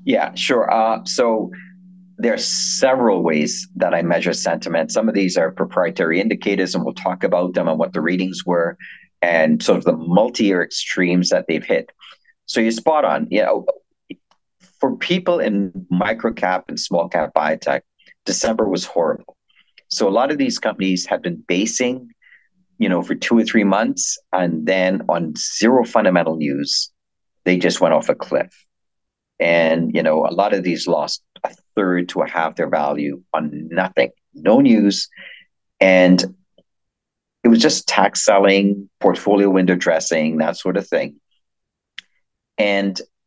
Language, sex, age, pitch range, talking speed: English, male, 50-69, 85-115 Hz, 160 wpm